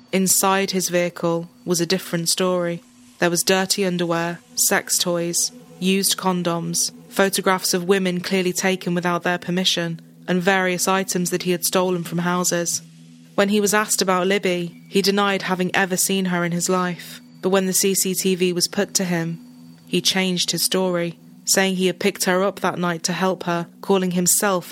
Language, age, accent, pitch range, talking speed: English, 20-39, British, 175-190 Hz, 175 wpm